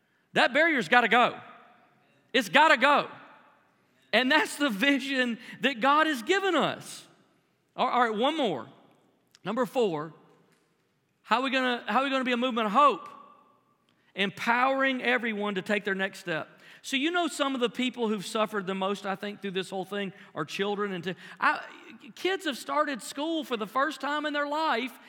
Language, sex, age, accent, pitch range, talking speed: English, male, 40-59, American, 205-280 Hz, 170 wpm